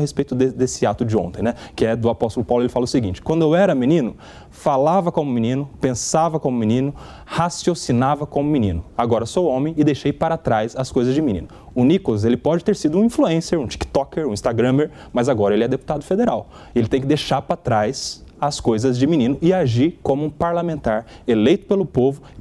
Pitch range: 120-165 Hz